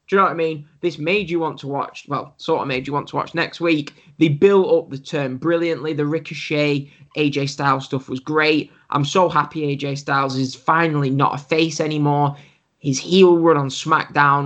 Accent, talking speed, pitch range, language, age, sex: British, 210 wpm, 140-175 Hz, English, 10-29, male